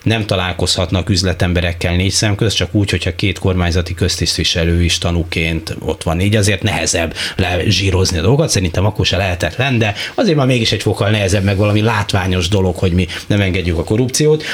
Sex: male